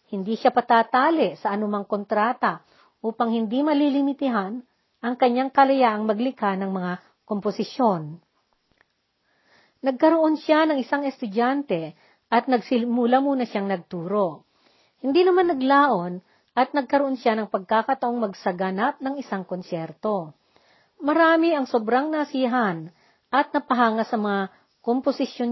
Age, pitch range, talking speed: 40-59, 200-270 Hz, 110 wpm